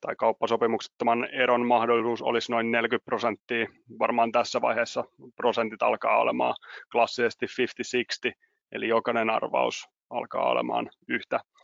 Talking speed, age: 115 wpm, 30-49